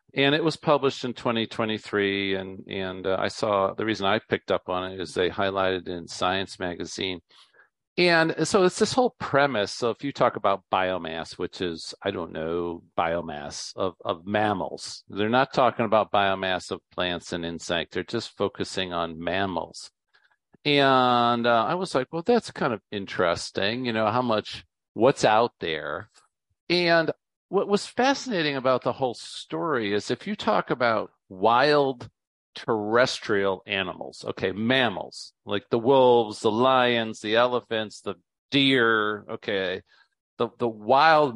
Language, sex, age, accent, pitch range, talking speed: English, male, 50-69, American, 95-135 Hz, 155 wpm